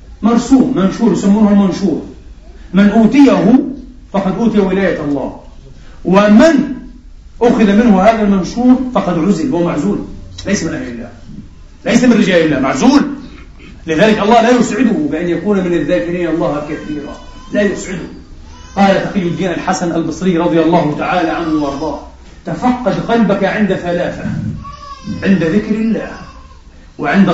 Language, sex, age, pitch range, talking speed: Arabic, male, 40-59, 170-220 Hz, 125 wpm